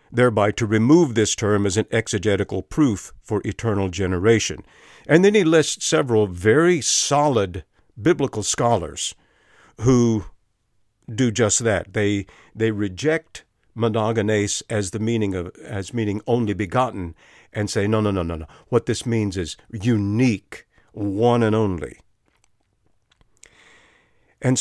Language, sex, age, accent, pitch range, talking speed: English, male, 50-69, American, 100-125 Hz, 130 wpm